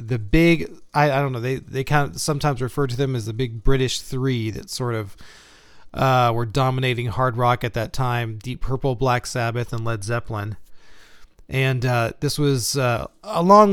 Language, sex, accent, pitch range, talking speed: English, male, American, 115-145 Hz, 190 wpm